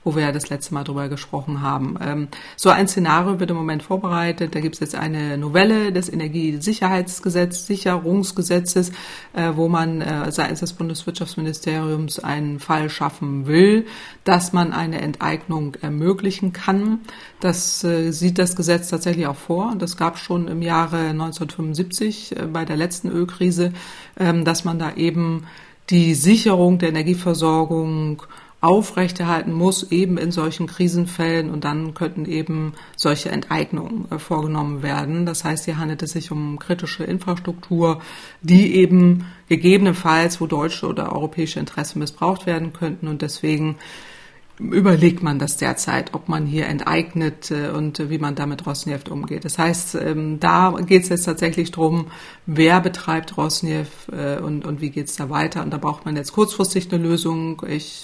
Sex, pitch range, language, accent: female, 155-180 Hz, German, German